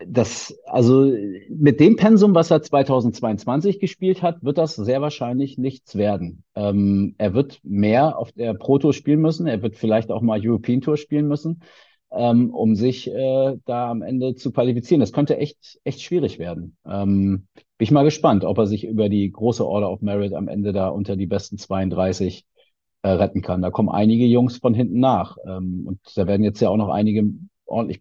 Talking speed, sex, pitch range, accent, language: 195 wpm, male, 105-135 Hz, German, German